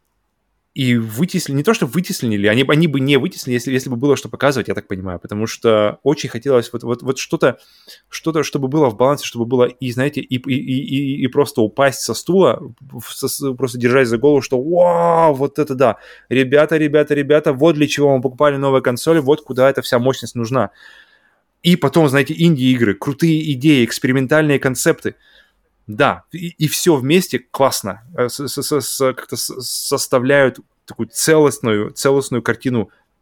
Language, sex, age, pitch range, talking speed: Russian, male, 20-39, 115-145 Hz, 165 wpm